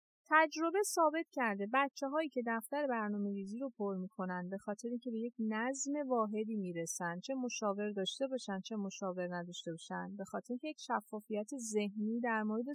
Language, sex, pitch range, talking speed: Persian, female, 210-280 Hz, 180 wpm